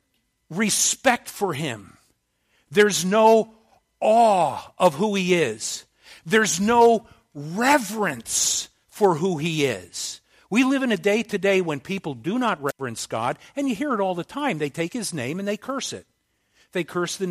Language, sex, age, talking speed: English, male, 50-69, 165 wpm